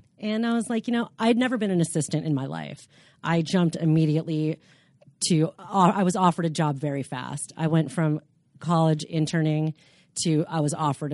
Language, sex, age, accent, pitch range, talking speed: English, female, 30-49, American, 150-185 Hz, 190 wpm